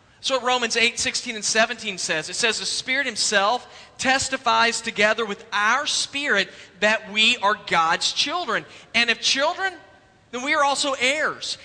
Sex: male